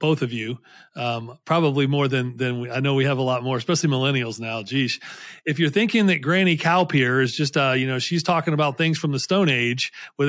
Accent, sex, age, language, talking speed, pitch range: American, male, 40-59, English, 235 wpm, 130-160 Hz